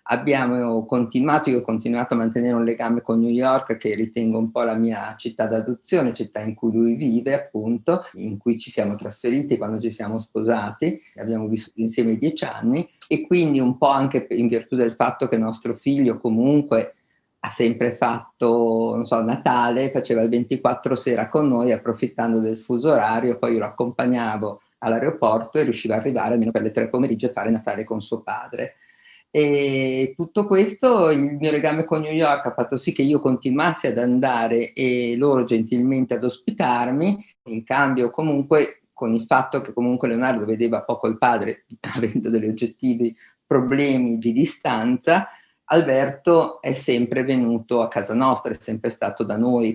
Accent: native